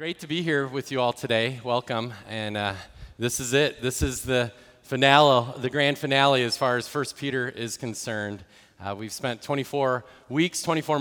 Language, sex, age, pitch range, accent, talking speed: English, male, 30-49, 115-145 Hz, American, 185 wpm